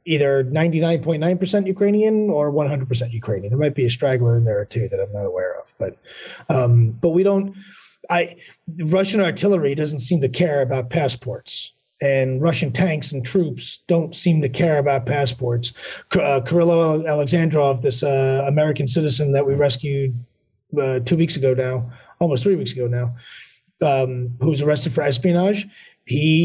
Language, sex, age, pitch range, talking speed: English, male, 30-49, 130-165 Hz, 165 wpm